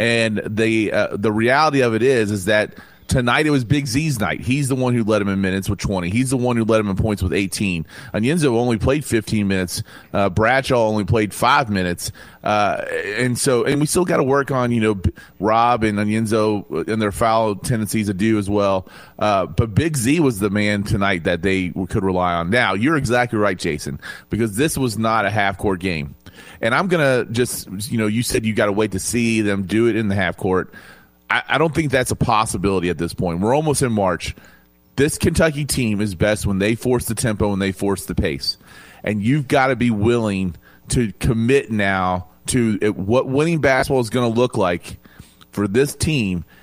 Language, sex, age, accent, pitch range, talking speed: English, male, 30-49, American, 100-125 Hz, 215 wpm